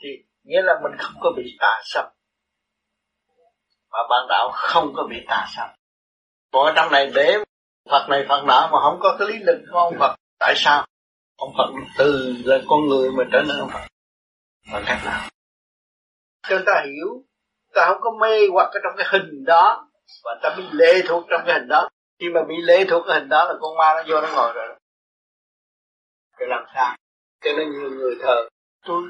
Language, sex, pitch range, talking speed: Vietnamese, male, 150-220 Hz, 200 wpm